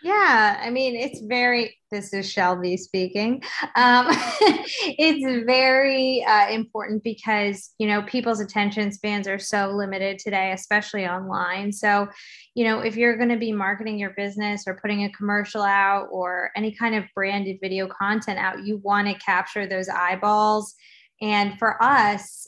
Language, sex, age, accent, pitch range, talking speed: English, female, 20-39, American, 195-225 Hz, 160 wpm